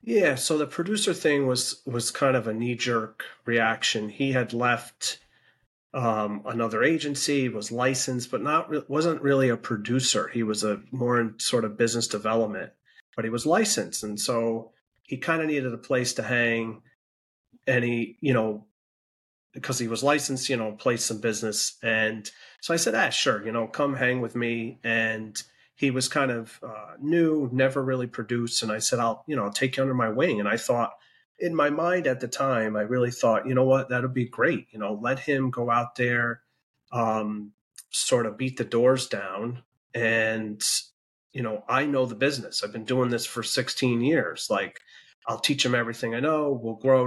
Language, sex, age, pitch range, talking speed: English, male, 30-49, 115-130 Hz, 195 wpm